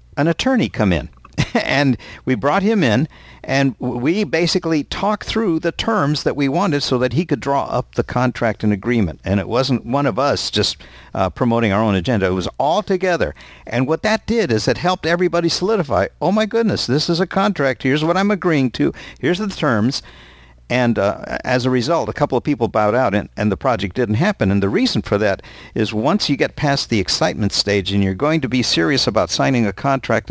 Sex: male